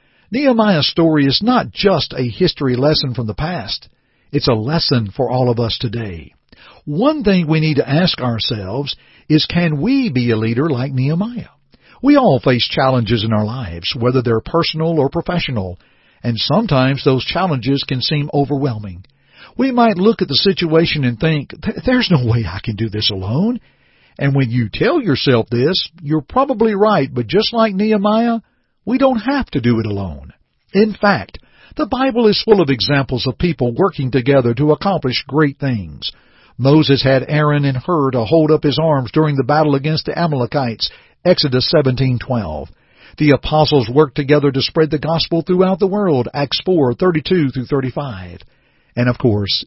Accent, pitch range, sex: American, 125-175 Hz, male